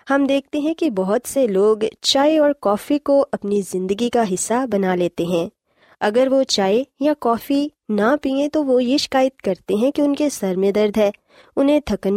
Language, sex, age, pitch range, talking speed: Urdu, female, 20-39, 195-275 Hz, 195 wpm